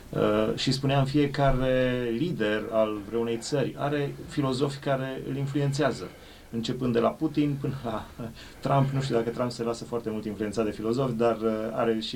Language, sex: English, male